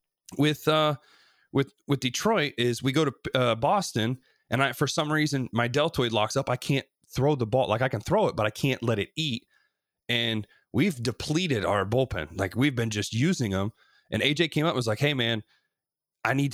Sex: male